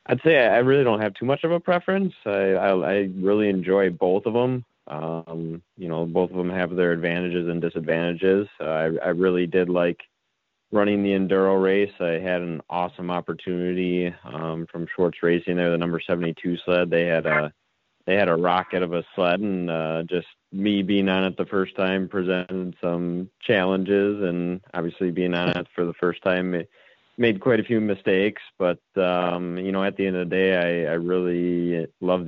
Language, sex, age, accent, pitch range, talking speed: English, male, 30-49, American, 85-95 Hz, 195 wpm